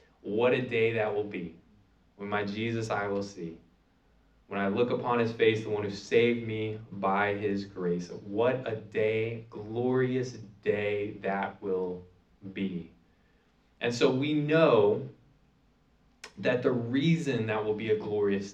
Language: English